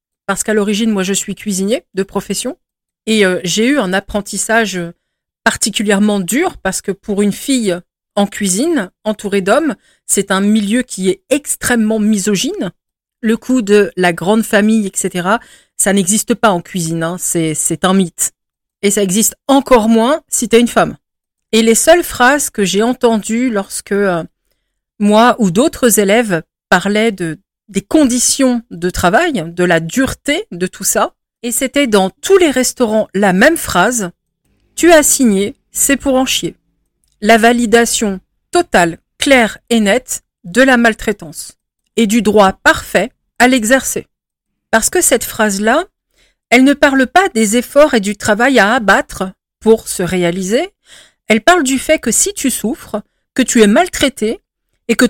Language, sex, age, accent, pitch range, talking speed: French, female, 40-59, French, 195-255 Hz, 160 wpm